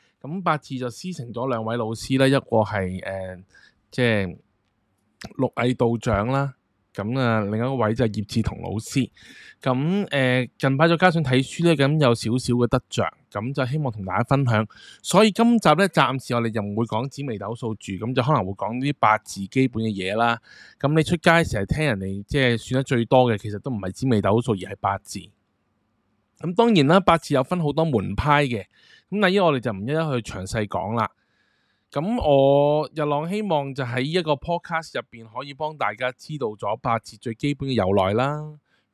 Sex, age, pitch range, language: male, 20-39, 110-150 Hz, Chinese